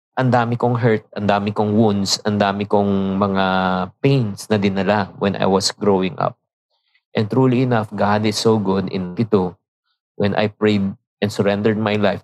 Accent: native